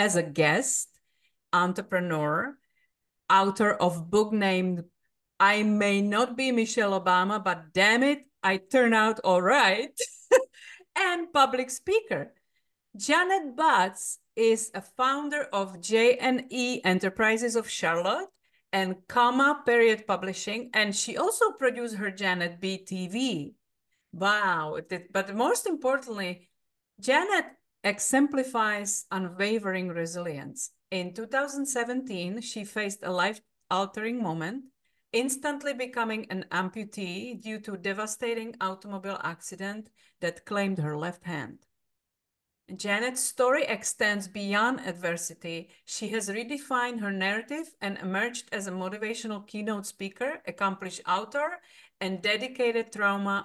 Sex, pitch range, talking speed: female, 185-245 Hz, 110 wpm